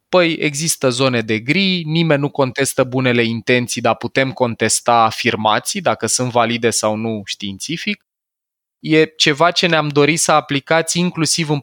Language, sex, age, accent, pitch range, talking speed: Romanian, male, 20-39, native, 115-145 Hz, 150 wpm